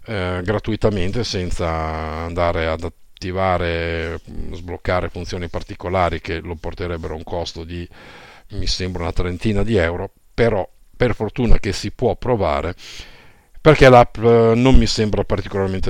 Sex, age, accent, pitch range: male, 50-69, native, 90-115 Hz